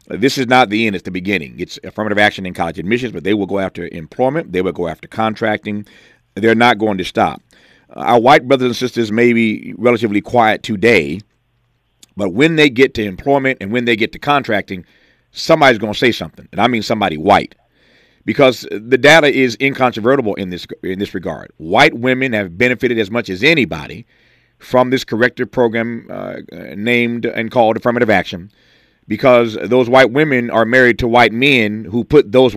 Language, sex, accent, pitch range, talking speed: English, male, American, 110-130 Hz, 190 wpm